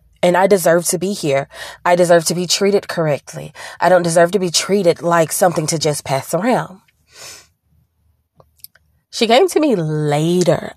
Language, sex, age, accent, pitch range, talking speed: English, female, 20-39, American, 150-190 Hz, 160 wpm